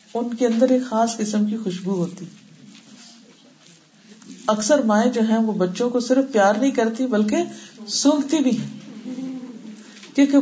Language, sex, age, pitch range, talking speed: Urdu, female, 50-69, 190-240 Hz, 130 wpm